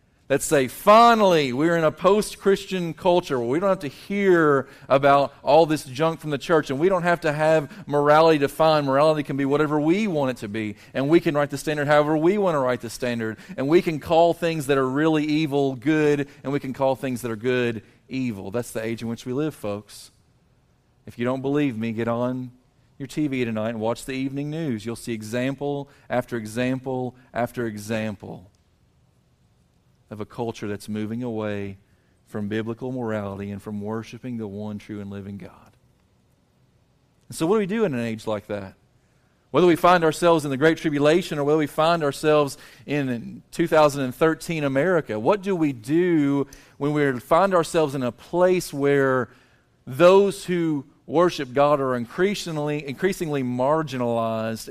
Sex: male